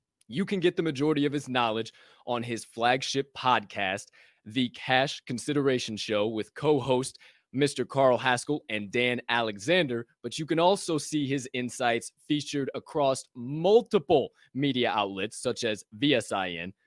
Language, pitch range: English, 125-160 Hz